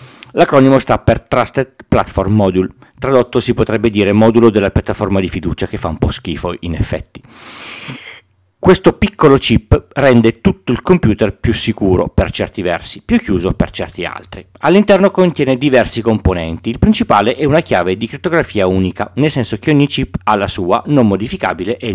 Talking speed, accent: 170 wpm, native